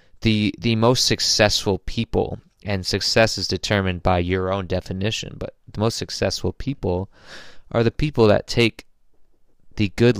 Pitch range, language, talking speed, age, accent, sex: 95-110 Hz, English, 145 wpm, 20-39, American, male